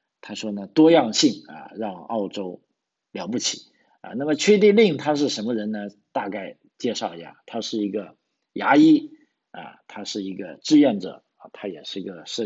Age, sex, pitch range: 50-69, male, 105-135 Hz